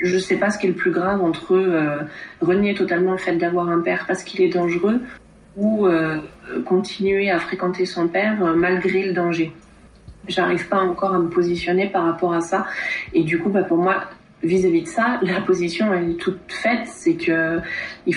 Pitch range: 165-195 Hz